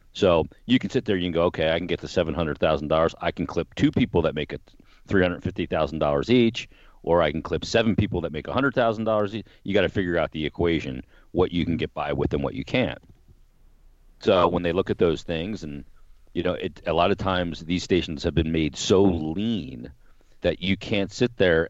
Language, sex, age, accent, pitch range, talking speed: English, male, 40-59, American, 75-90 Hz, 215 wpm